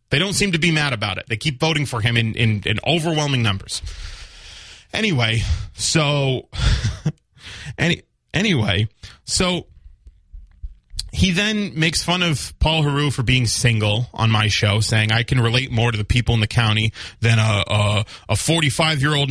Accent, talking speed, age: American, 160 wpm, 30-49